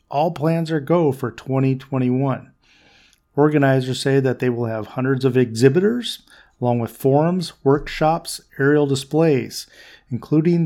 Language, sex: English, male